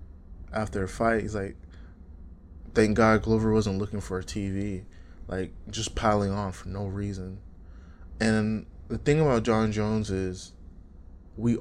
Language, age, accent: English, 20-39, American